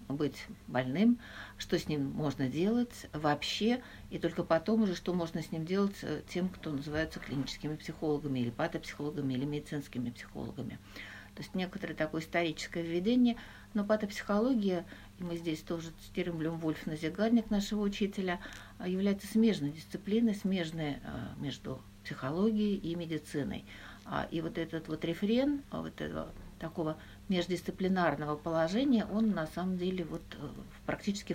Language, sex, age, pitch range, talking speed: Russian, female, 60-79, 155-195 Hz, 130 wpm